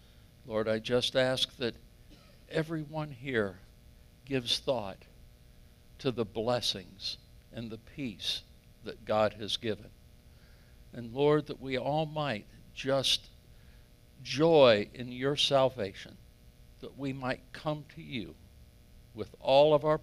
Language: English